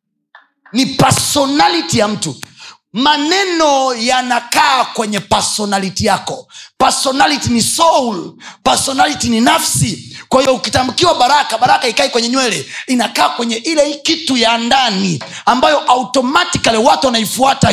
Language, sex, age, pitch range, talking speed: Swahili, male, 30-49, 215-275 Hz, 110 wpm